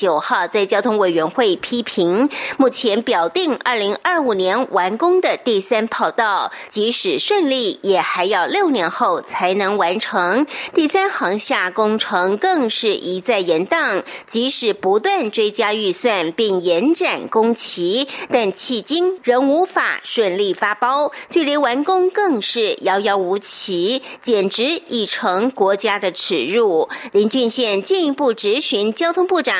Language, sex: German, female